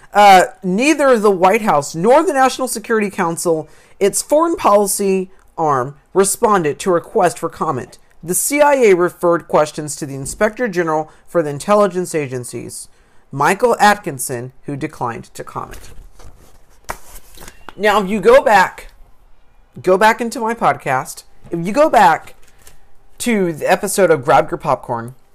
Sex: male